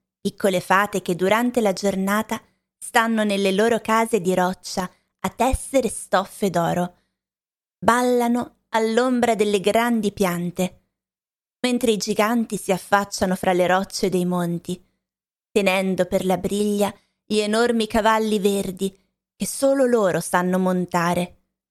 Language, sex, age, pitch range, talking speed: Italian, female, 20-39, 185-225 Hz, 120 wpm